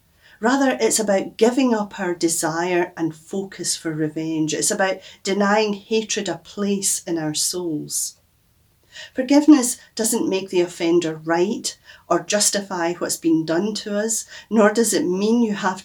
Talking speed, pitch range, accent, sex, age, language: 150 wpm, 165-210 Hz, British, female, 40-59, English